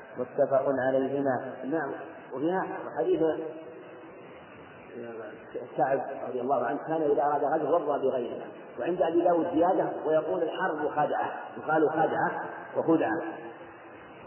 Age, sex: 40-59, male